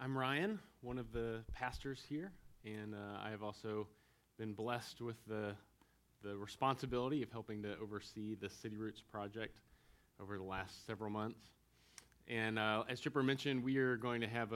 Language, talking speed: English, 170 wpm